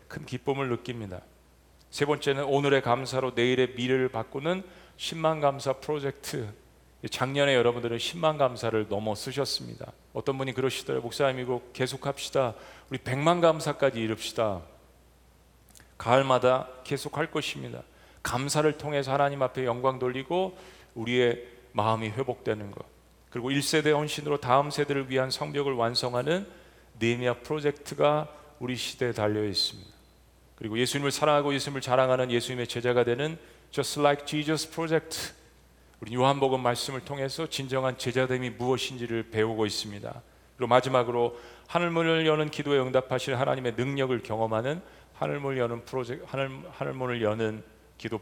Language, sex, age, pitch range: Korean, male, 40-59, 115-140 Hz